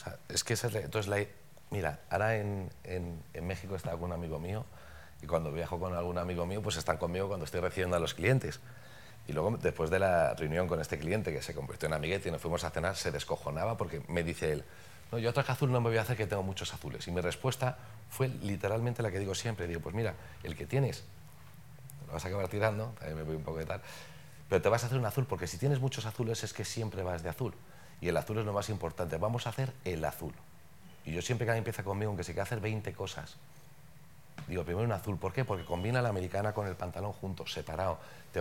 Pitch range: 90-115 Hz